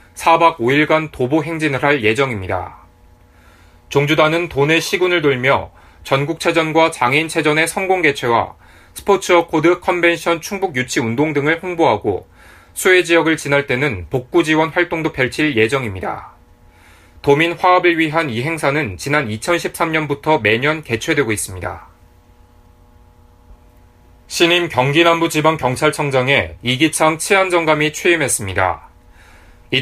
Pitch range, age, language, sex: 105-160 Hz, 30-49, Korean, male